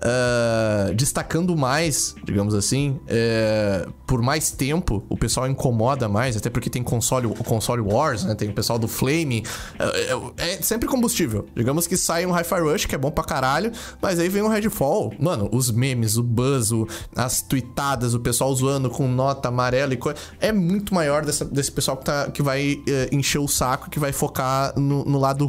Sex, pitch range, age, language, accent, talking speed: male, 120-155 Hz, 20-39, Portuguese, Brazilian, 195 wpm